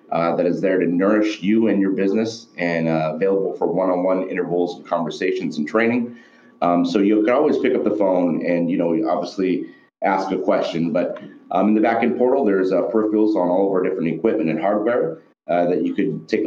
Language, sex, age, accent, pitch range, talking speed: English, male, 30-49, American, 85-105 Hz, 210 wpm